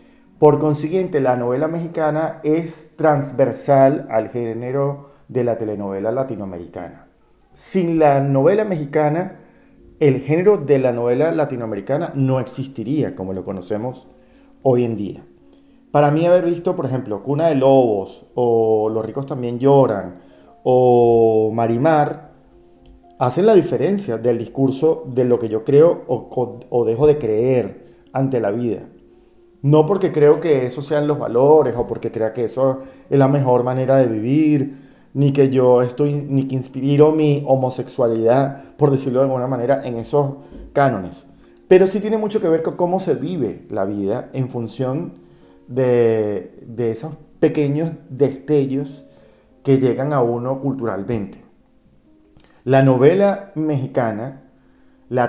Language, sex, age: Spanish, male, 40-59